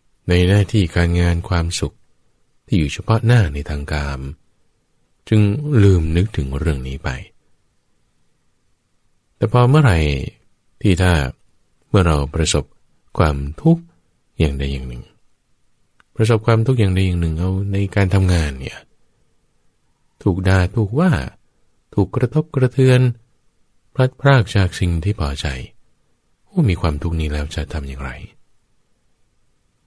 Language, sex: English, male